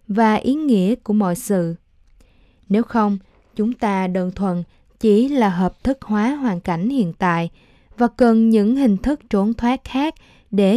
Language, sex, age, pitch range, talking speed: Vietnamese, female, 20-39, 185-230 Hz, 165 wpm